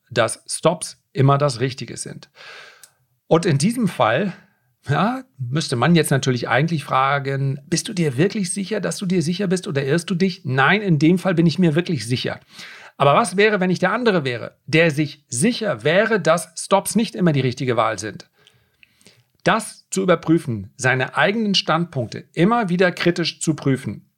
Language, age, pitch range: German, 40-59, 135-180 Hz